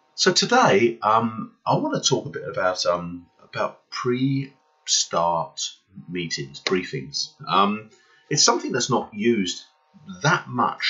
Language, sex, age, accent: English, male, 30-49, British